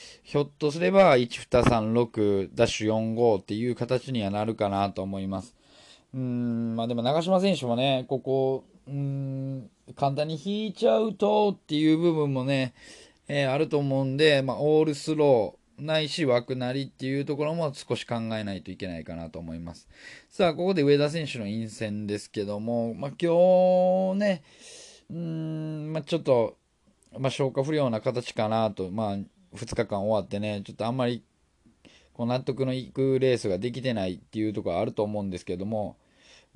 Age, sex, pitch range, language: 20-39, male, 110-155 Hz, Japanese